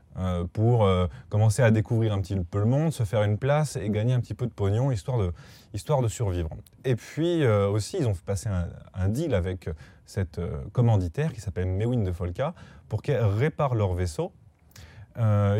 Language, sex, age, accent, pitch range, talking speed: French, male, 20-39, French, 100-135 Hz, 205 wpm